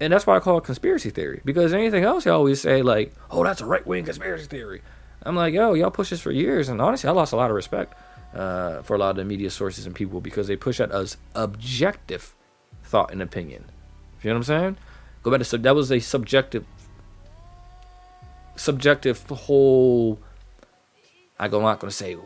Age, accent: 20-39, American